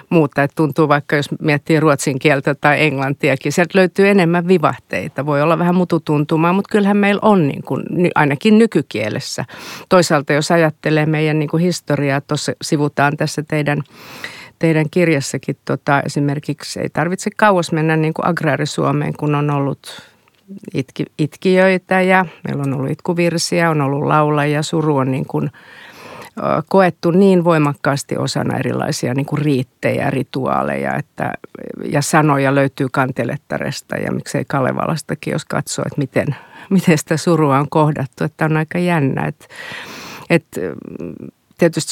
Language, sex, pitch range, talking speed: Finnish, female, 145-170 Hz, 135 wpm